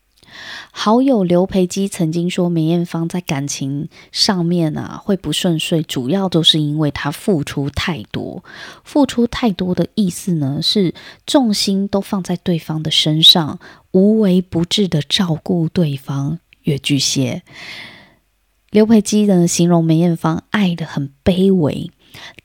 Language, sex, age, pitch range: Chinese, female, 20-39, 160-205 Hz